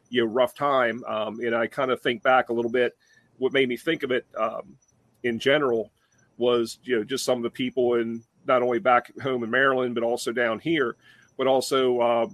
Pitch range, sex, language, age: 120-135 Hz, male, English, 40-59